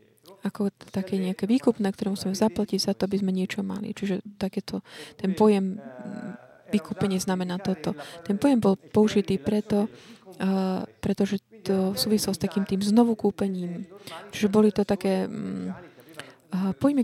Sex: female